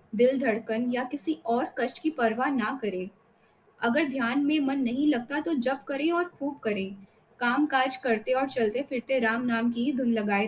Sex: female